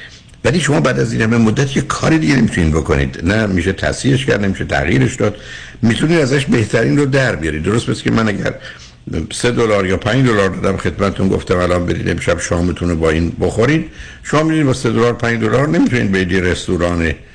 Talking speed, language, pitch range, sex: 200 wpm, Persian, 85-120 Hz, male